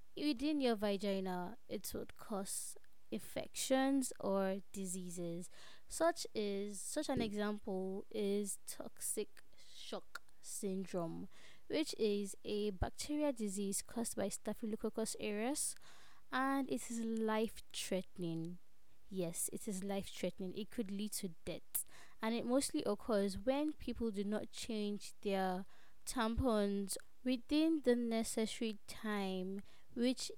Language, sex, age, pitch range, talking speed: English, female, 20-39, 195-245 Hz, 110 wpm